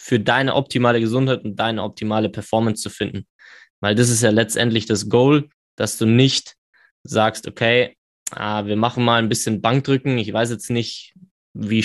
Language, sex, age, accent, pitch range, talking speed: German, male, 20-39, German, 105-120 Hz, 170 wpm